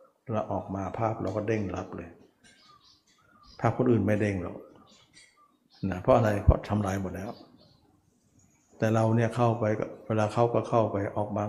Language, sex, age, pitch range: Thai, male, 60-79, 100-115 Hz